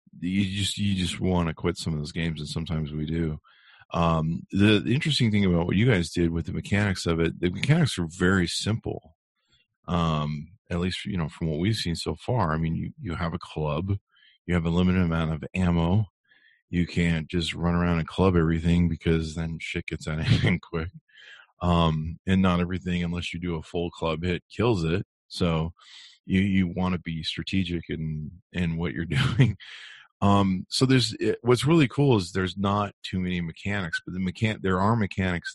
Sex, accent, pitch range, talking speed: male, American, 85-100 Hz, 200 wpm